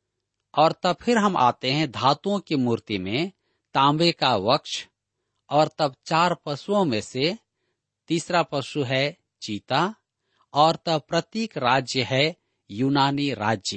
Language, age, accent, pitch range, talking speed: Hindi, 50-69, native, 120-170 Hz, 130 wpm